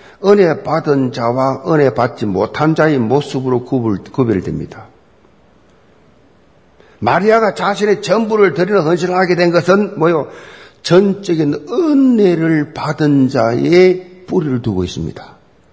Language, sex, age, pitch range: Korean, male, 50-69, 140-205 Hz